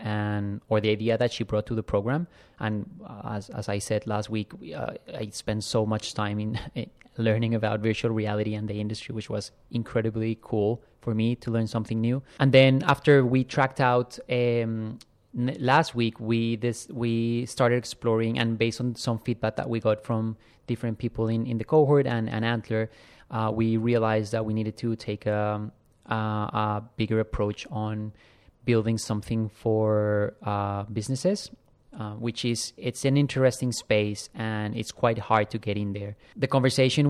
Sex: male